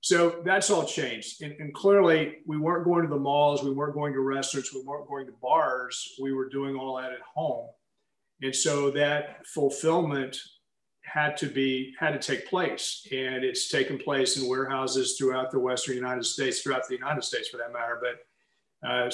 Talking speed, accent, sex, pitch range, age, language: 190 wpm, American, male, 130-150 Hz, 40-59, English